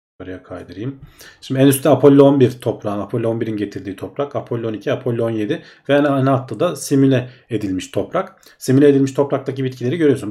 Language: Turkish